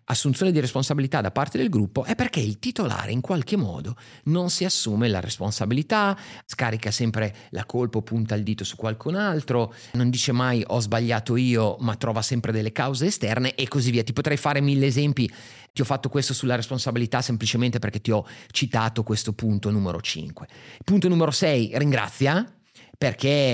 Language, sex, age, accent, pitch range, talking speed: Italian, male, 30-49, native, 115-150 Hz, 180 wpm